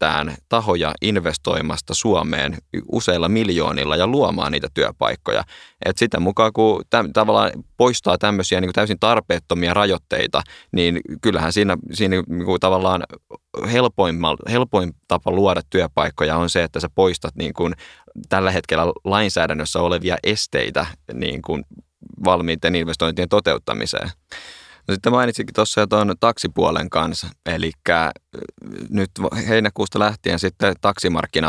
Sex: male